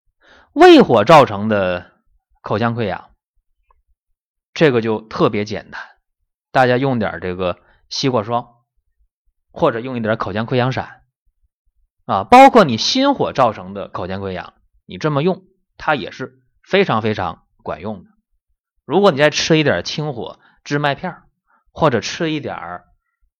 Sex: male